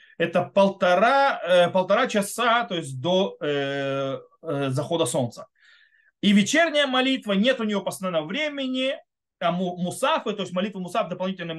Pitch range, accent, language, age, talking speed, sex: 170-255 Hz, native, Russian, 30-49, 135 wpm, male